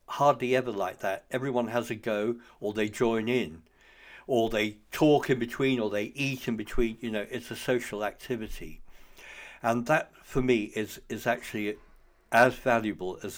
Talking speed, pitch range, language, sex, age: 170 wpm, 100-125 Hz, English, male, 60-79